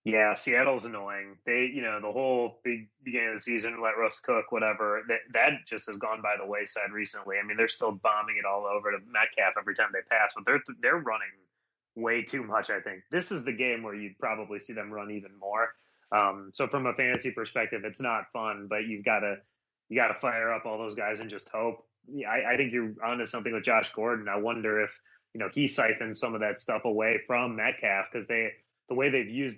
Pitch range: 105-115 Hz